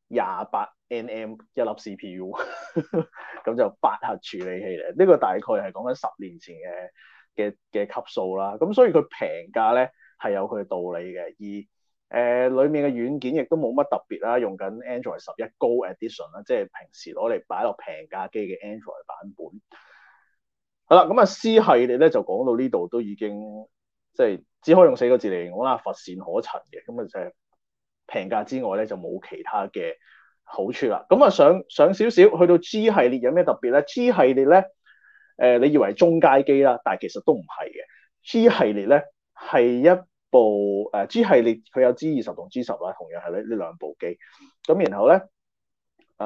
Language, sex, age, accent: Chinese, male, 30-49, native